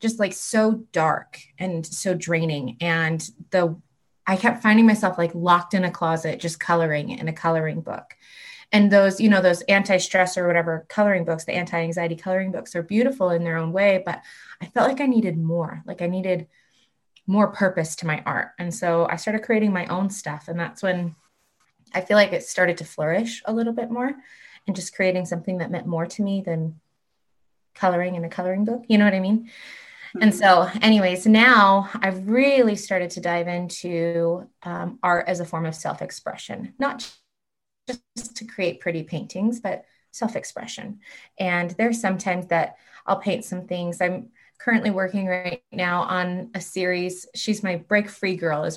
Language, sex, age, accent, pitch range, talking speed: English, female, 20-39, American, 170-210 Hz, 180 wpm